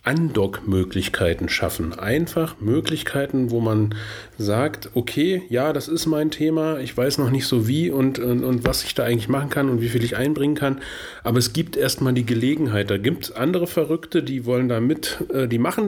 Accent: German